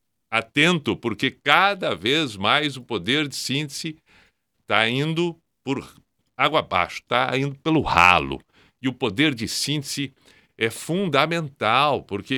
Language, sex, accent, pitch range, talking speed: Portuguese, male, Brazilian, 120-165 Hz, 125 wpm